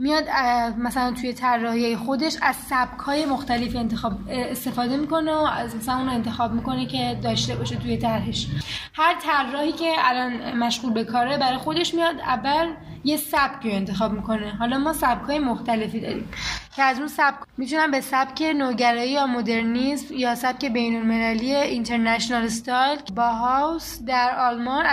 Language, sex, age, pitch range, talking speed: Persian, female, 10-29, 235-275 Hz, 150 wpm